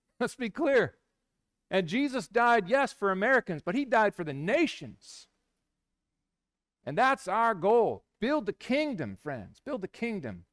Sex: male